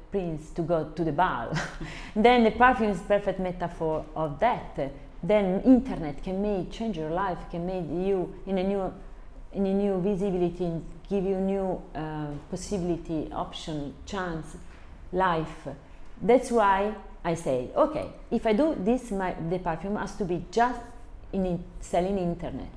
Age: 40-59